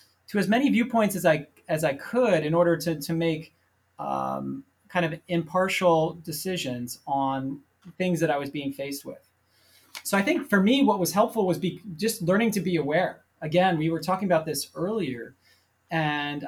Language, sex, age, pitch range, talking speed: English, male, 30-49, 150-190 Hz, 180 wpm